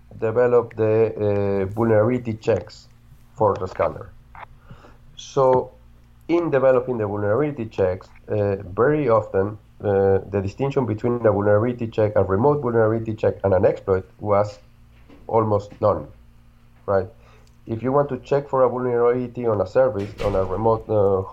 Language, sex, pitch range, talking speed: English, male, 100-120 Hz, 140 wpm